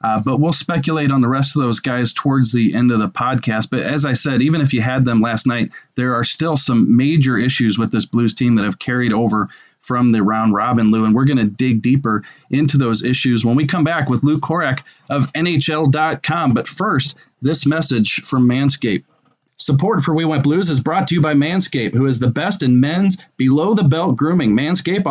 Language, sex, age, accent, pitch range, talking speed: English, male, 30-49, American, 125-160 Hz, 215 wpm